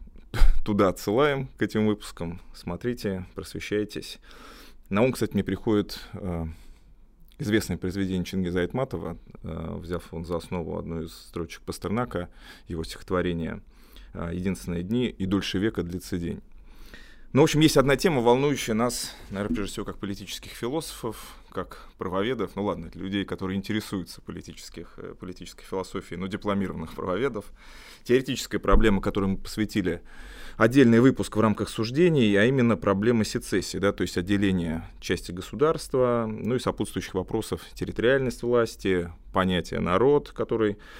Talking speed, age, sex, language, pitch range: 130 wpm, 20-39, male, Russian, 90-110 Hz